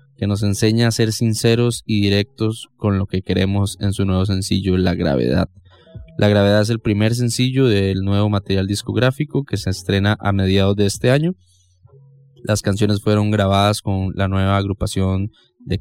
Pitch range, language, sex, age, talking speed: 95-110 Hz, English, male, 20-39, 170 wpm